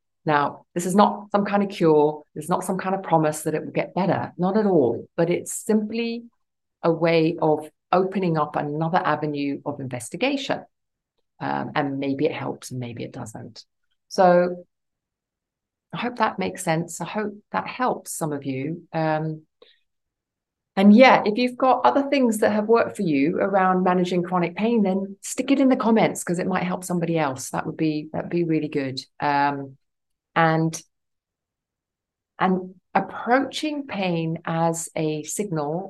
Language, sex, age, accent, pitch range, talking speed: English, female, 40-59, British, 150-190 Hz, 165 wpm